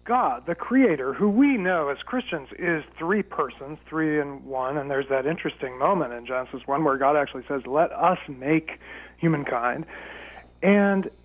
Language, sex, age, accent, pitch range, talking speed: English, male, 40-59, American, 145-210 Hz, 165 wpm